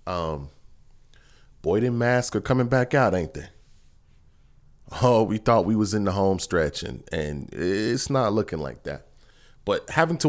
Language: English